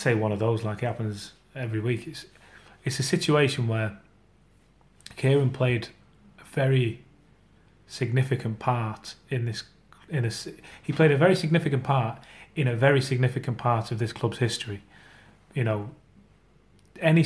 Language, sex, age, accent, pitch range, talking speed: English, male, 30-49, British, 115-130 Hz, 145 wpm